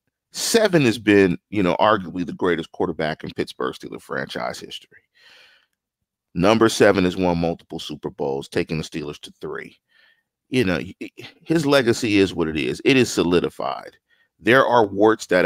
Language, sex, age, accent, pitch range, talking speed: English, male, 40-59, American, 95-145 Hz, 160 wpm